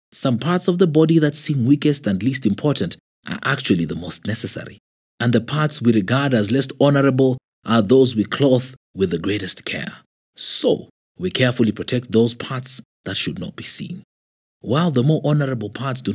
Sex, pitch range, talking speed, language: male, 105-140 Hz, 180 wpm, English